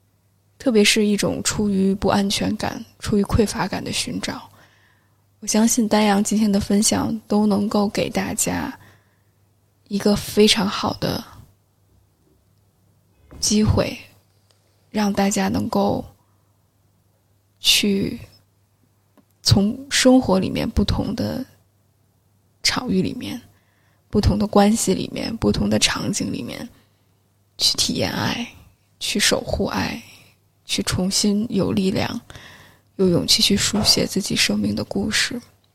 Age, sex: 10-29, female